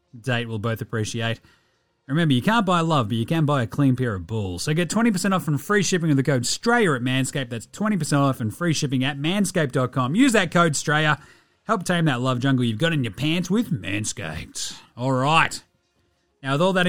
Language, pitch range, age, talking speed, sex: English, 125-180 Hz, 30-49, 215 wpm, male